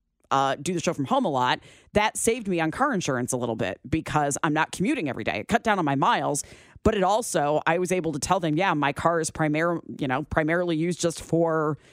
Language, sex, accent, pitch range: English, female, American, 140-185 Hz